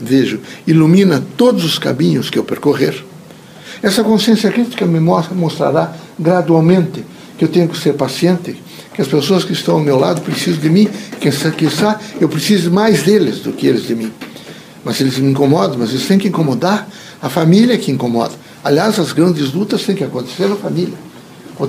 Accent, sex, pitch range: Brazilian, male, 160-210 Hz